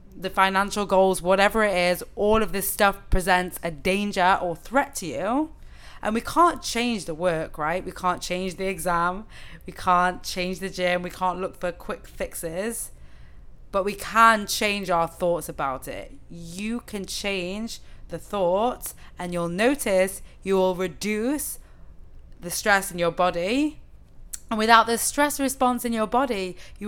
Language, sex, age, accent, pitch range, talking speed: English, female, 20-39, British, 180-205 Hz, 165 wpm